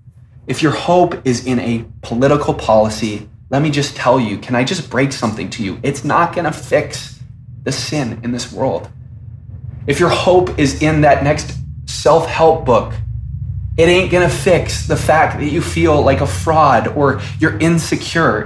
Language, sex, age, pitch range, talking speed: English, male, 20-39, 110-140 Hz, 180 wpm